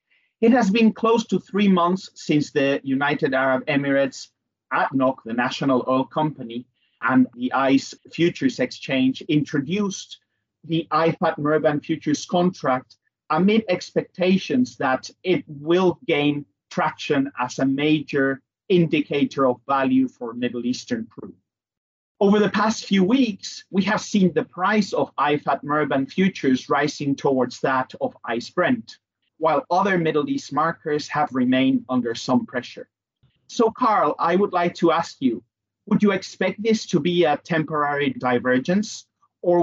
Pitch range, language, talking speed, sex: 130-185 Hz, English, 140 wpm, male